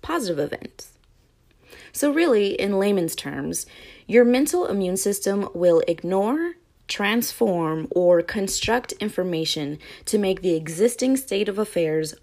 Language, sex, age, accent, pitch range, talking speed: English, female, 20-39, American, 170-235 Hz, 120 wpm